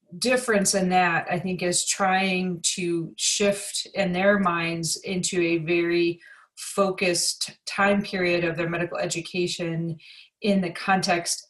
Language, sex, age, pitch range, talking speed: English, female, 30-49, 170-195 Hz, 130 wpm